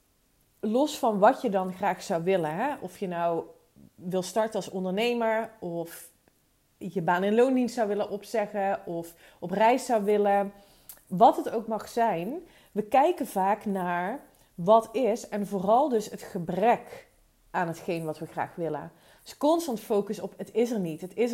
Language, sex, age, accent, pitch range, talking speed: Dutch, female, 30-49, Dutch, 180-235 Hz, 175 wpm